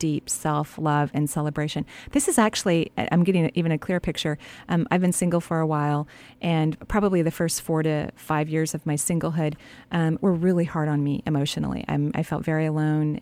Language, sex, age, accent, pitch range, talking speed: English, female, 40-59, American, 155-190 Hz, 195 wpm